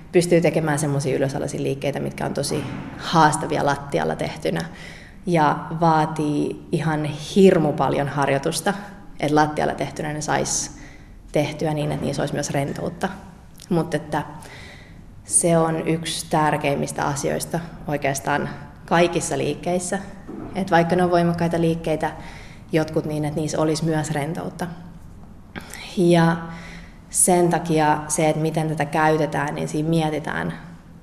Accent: native